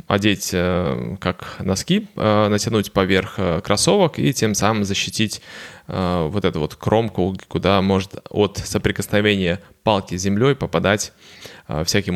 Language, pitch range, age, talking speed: Russian, 95-110 Hz, 20-39, 115 wpm